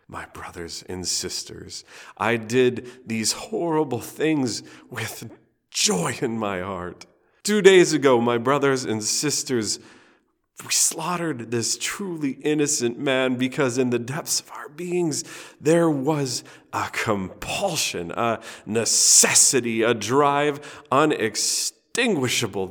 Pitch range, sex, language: 100-135 Hz, male, English